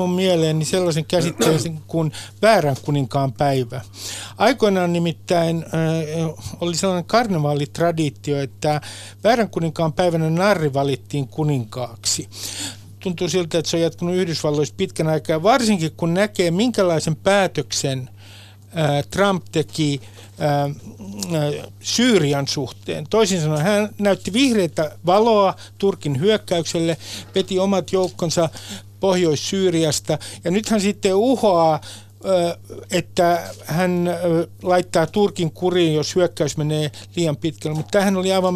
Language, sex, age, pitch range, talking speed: Finnish, male, 60-79, 135-185 Hz, 105 wpm